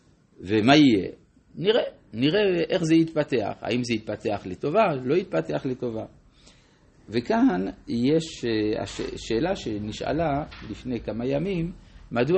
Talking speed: 105 wpm